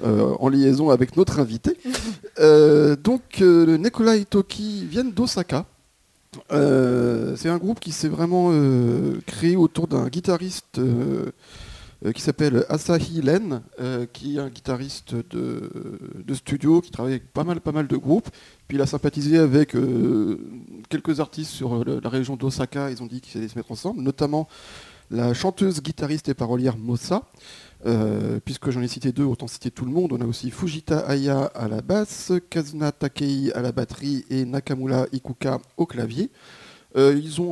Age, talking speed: 40-59, 175 wpm